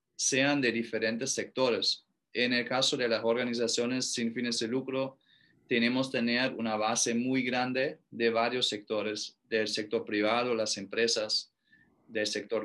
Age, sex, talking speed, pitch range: 20-39, male, 145 wpm, 110-125 Hz